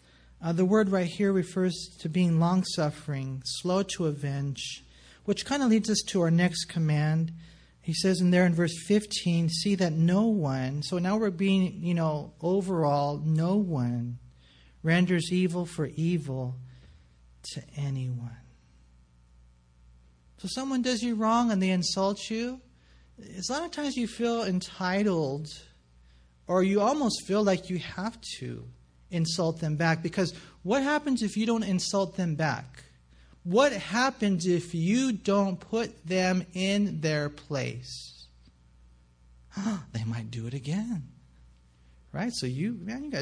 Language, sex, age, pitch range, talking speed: English, male, 40-59, 130-200 Hz, 145 wpm